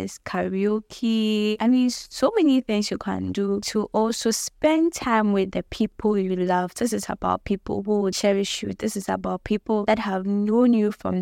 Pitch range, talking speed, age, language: 185-215 Hz, 185 wpm, 10-29, English